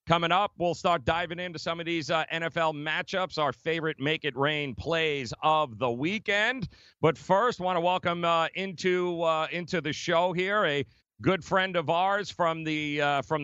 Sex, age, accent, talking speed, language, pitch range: male, 40-59, American, 190 wpm, English, 140-175 Hz